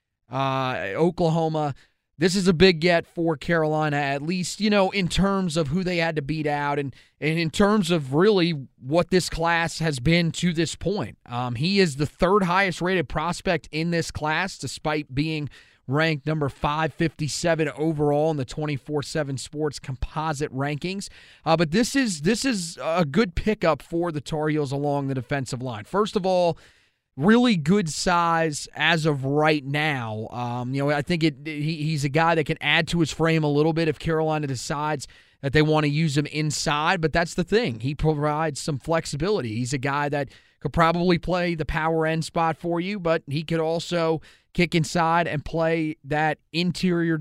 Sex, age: male, 30-49